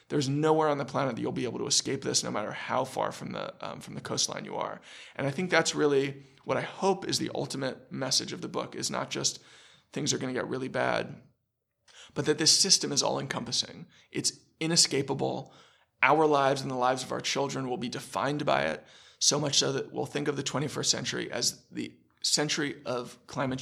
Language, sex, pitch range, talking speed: English, male, 130-160 Hz, 215 wpm